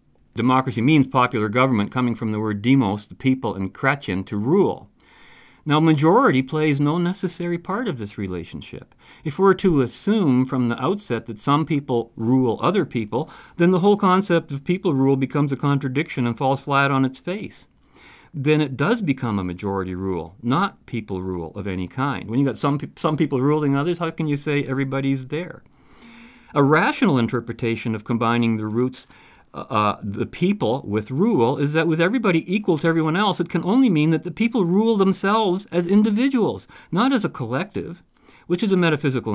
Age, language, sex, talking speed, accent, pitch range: 50-69, English, male, 185 wpm, American, 105-165 Hz